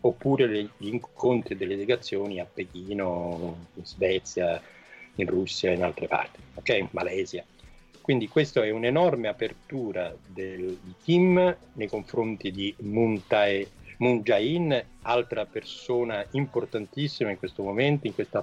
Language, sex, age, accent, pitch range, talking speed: Italian, male, 50-69, native, 95-115 Hz, 125 wpm